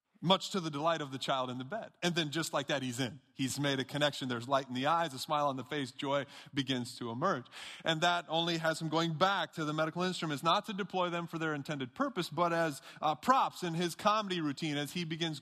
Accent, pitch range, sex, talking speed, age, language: American, 155-205 Hz, male, 255 wpm, 30-49, English